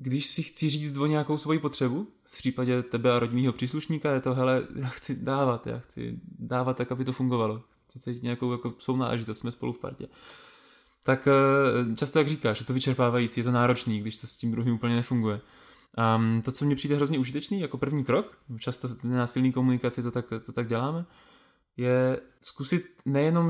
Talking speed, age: 190 wpm, 20-39